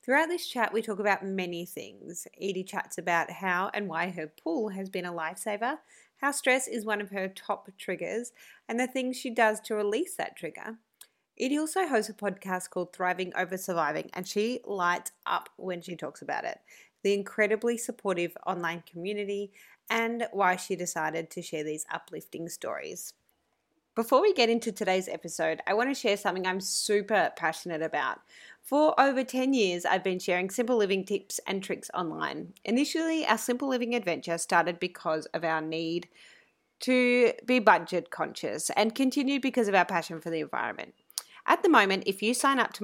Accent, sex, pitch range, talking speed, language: Australian, female, 180-240 Hz, 180 wpm, English